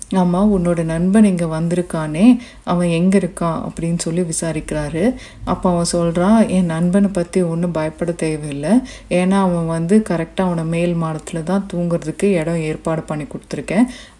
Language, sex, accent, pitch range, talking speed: Tamil, female, native, 165-190 Hz, 140 wpm